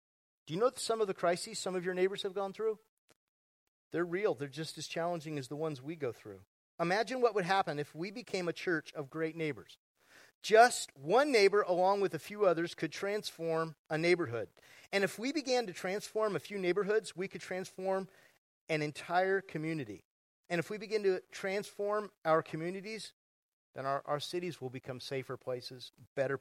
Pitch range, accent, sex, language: 150-200 Hz, American, male, English